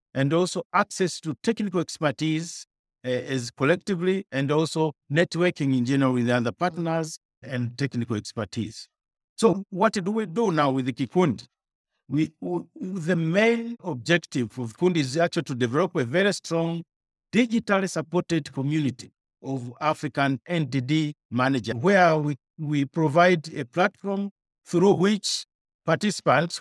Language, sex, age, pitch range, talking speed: English, male, 50-69, 140-180 Hz, 135 wpm